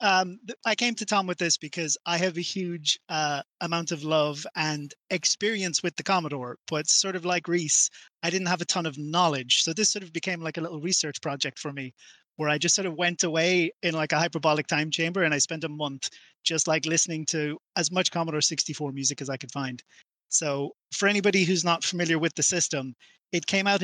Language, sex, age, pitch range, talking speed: English, male, 30-49, 155-185 Hz, 220 wpm